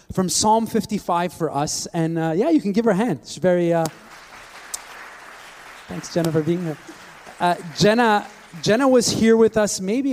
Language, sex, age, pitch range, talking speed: English, male, 30-49, 155-185 Hz, 180 wpm